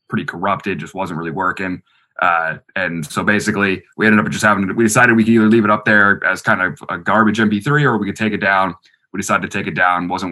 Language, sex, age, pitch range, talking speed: English, male, 20-39, 95-110 Hz, 250 wpm